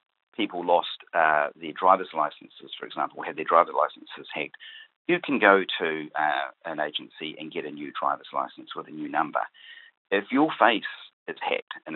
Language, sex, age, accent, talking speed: English, male, 40-59, Australian, 180 wpm